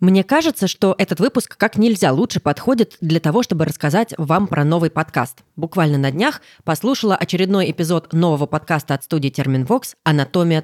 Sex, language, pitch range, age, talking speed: female, Russian, 150-200 Hz, 20-39, 165 wpm